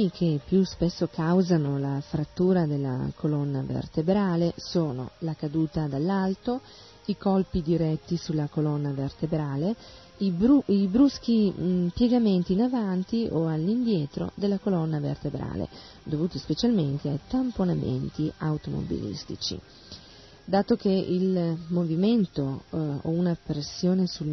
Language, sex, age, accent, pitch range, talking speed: Italian, female, 40-59, native, 155-195 Hz, 110 wpm